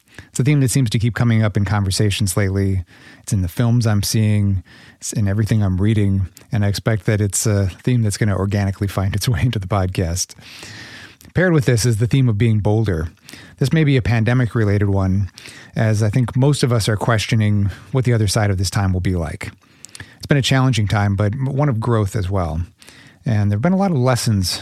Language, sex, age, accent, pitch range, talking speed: English, male, 30-49, American, 100-120 Hz, 225 wpm